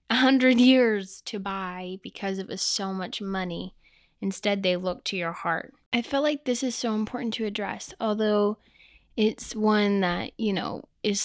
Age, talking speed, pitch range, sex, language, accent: 10-29, 175 wpm, 190-230 Hz, female, English, American